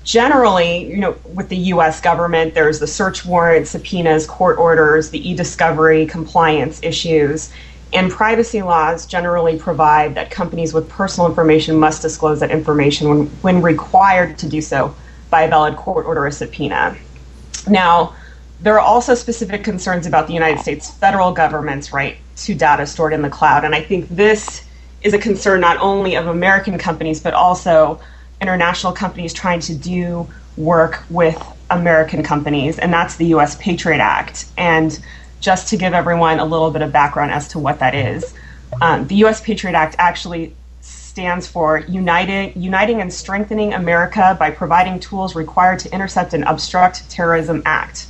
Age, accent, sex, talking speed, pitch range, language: 30-49, American, female, 165 wpm, 155-185 Hz, English